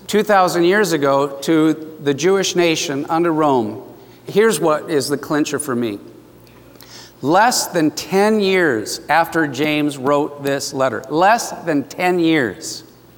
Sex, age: male, 50-69